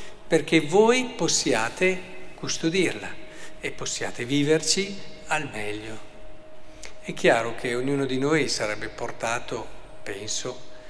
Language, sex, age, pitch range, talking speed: Italian, male, 50-69, 135-180 Hz, 100 wpm